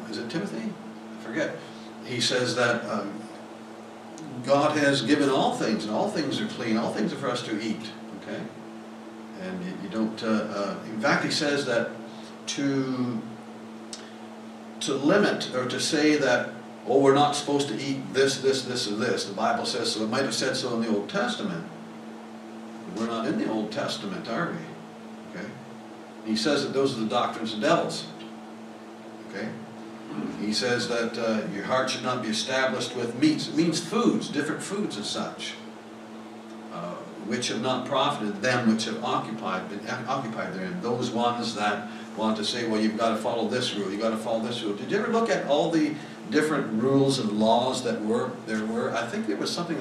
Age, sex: 60-79, male